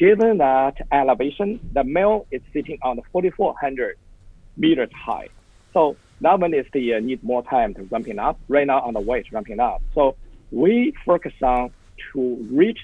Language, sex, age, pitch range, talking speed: English, male, 50-69, 125-190 Hz, 175 wpm